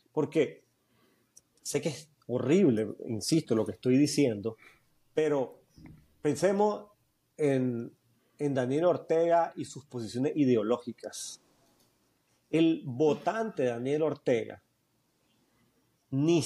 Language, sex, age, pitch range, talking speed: Spanish, male, 40-59, 130-160 Hz, 90 wpm